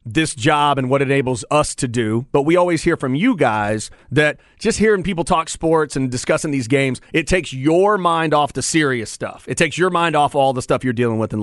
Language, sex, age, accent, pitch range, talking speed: English, male, 30-49, American, 135-170 Hz, 240 wpm